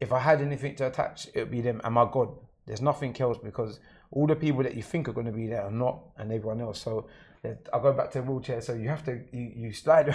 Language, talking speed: Arabic, 285 wpm